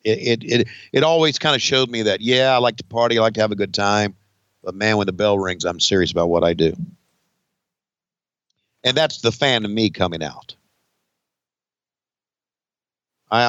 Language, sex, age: English, male, 50-69